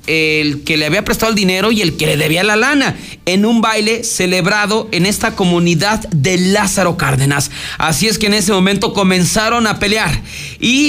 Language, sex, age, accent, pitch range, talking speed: Spanish, male, 40-59, Mexican, 175-220 Hz, 185 wpm